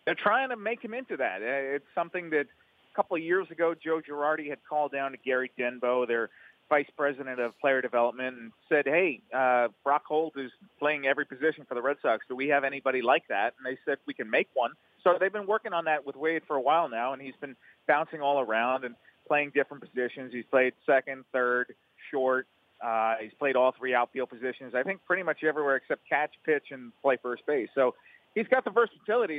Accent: American